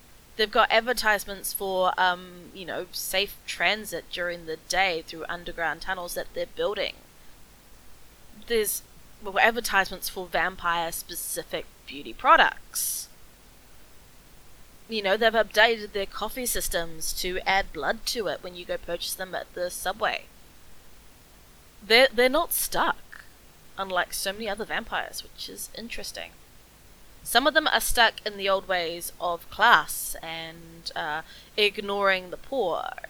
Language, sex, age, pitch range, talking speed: English, female, 20-39, 175-220 Hz, 130 wpm